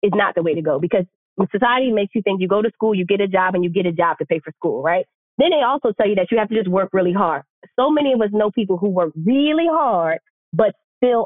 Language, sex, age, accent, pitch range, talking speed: English, female, 20-39, American, 185-235 Hz, 295 wpm